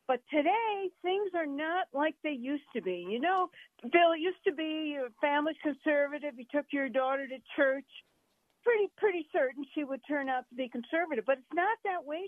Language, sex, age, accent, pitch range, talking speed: English, female, 50-69, American, 245-330 Hz, 200 wpm